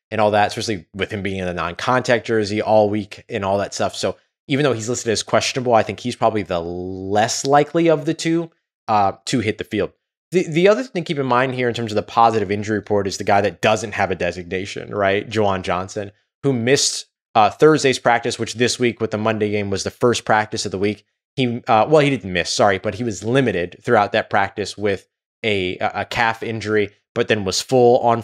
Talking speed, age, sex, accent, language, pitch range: 230 wpm, 20-39, male, American, English, 105-130 Hz